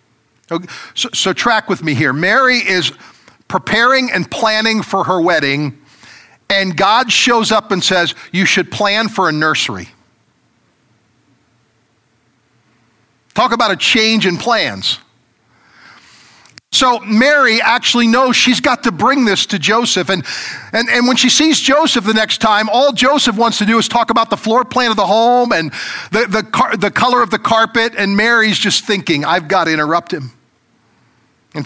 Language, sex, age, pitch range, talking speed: English, male, 50-69, 155-225 Hz, 165 wpm